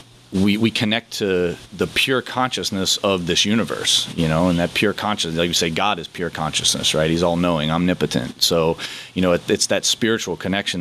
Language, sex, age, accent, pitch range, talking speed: English, male, 30-49, American, 85-100 Hz, 195 wpm